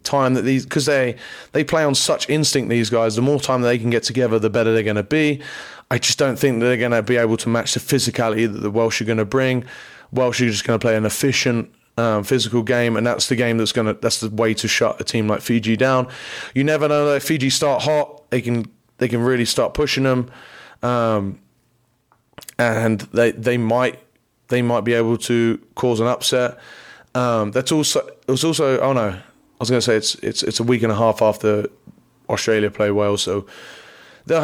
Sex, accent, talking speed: male, British, 225 wpm